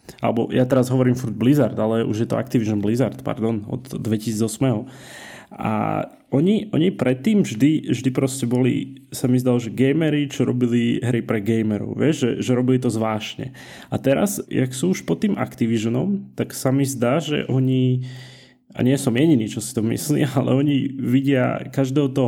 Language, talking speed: Slovak, 175 wpm